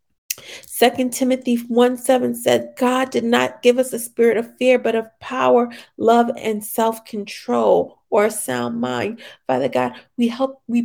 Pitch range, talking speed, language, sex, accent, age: 210-245 Hz, 160 wpm, English, female, American, 40-59